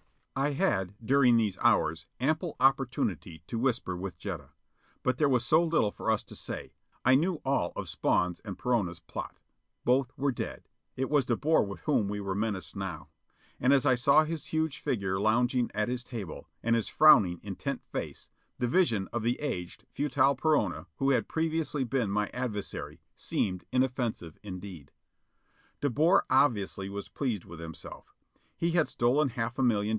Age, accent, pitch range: 50-69, American, 100-140 Hz